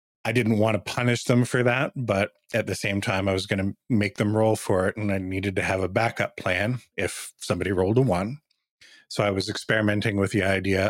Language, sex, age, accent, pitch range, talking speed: English, male, 30-49, American, 95-115 Hz, 230 wpm